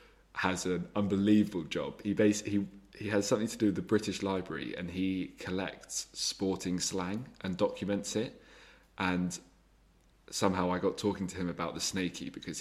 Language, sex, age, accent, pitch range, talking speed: English, male, 20-39, British, 85-100 Hz, 165 wpm